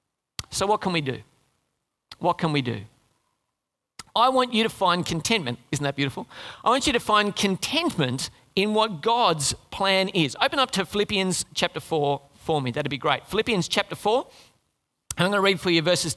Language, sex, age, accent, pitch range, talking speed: English, male, 40-59, Australian, 150-225 Hz, 185 wpm